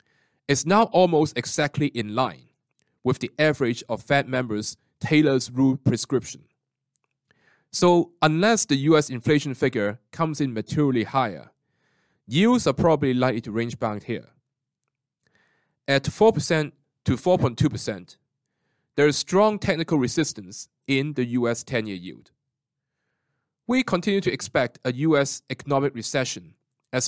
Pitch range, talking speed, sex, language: 130-155 Hz, 125 wpm, male, English